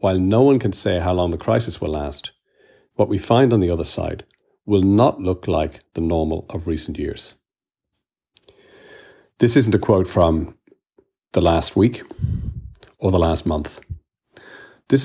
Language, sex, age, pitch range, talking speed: English, male, 40-59, 85-105 Hz, 160 wpm